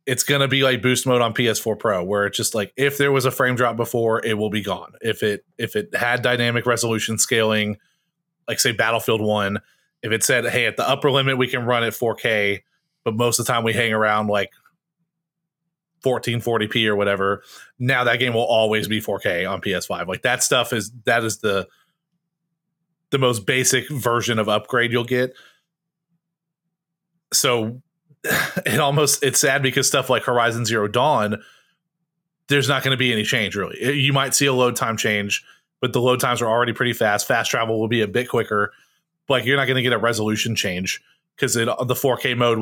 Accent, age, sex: American, 30-49, male